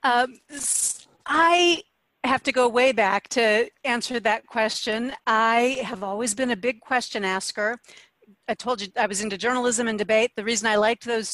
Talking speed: 175 wpm